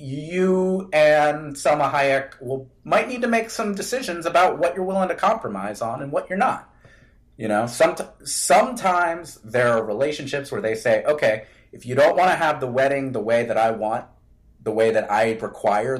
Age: 30-49